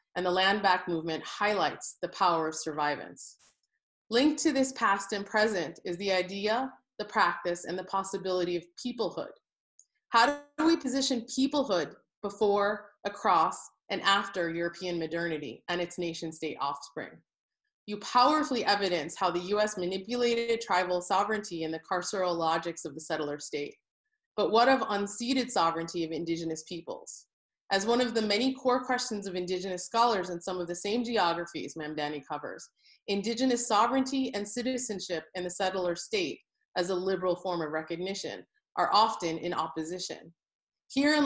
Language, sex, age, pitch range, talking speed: English, female, 30-49, 175-230 Hz, 150 wpm